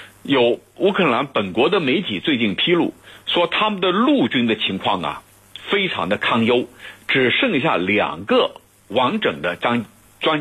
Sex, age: male, 60-79